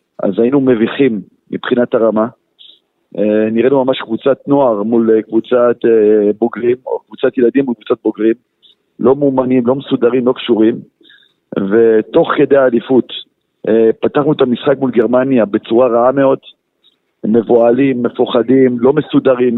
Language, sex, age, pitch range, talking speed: Hebrew, male, 50-69, 115-135 Hz, 120 wpm